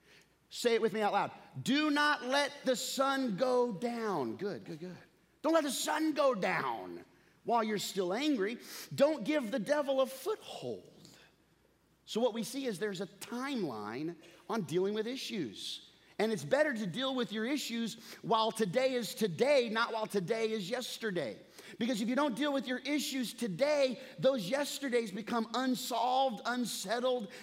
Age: 30-49